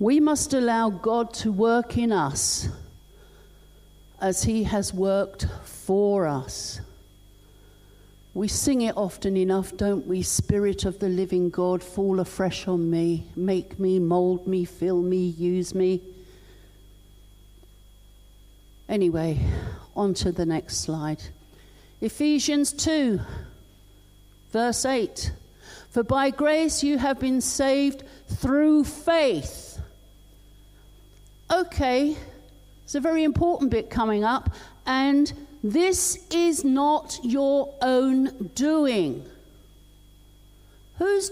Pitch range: 175-275 Hz